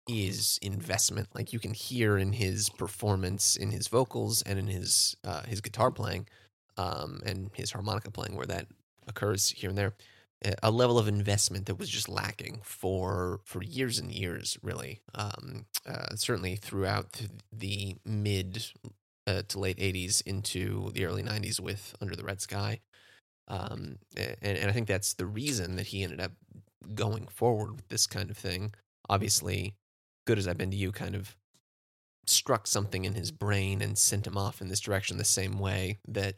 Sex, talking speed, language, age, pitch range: male, 175 wpm, English, 20-39, 95-110 Hz